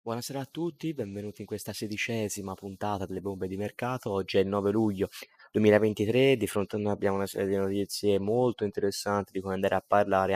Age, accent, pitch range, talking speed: 20-39, native, 100-115 Hz, 195 wpm